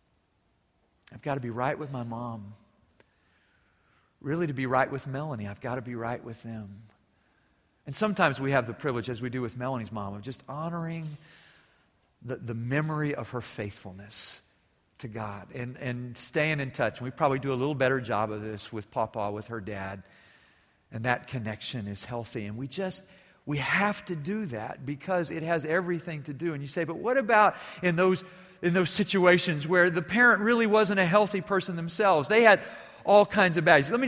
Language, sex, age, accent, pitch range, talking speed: English, male, 50-69, American, 115-175 Hz, 195 wpm